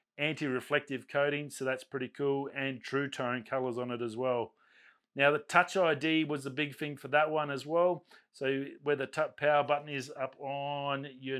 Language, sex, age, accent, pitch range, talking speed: English, male, 30-49, Australian, 125-140 Hz, 195 wpm